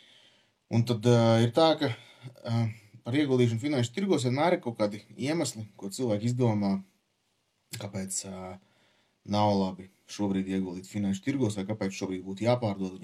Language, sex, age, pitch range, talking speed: English, male, 20-39, 95-115 Hz, 150 wpm